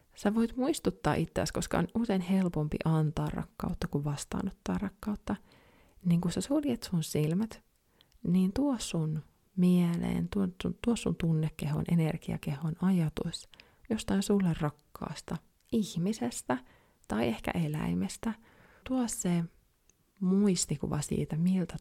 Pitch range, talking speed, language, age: 155-195 Hz, 115 wpm, Finnish, 30-49